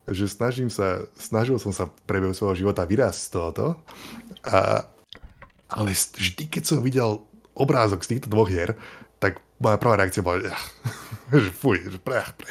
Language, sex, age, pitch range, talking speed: Slovak, male, 20-39, 90-110 Hz, 160 wpm